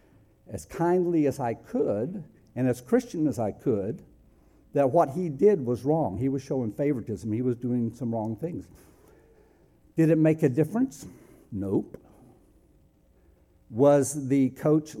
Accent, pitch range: American, 100-150 Hz